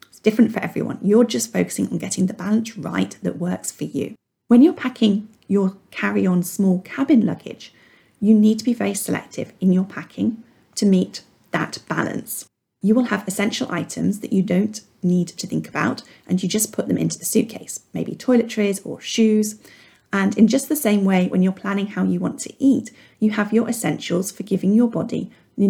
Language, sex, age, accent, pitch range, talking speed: English, female, 30-49, British, 185-230 Hz, 195 wpm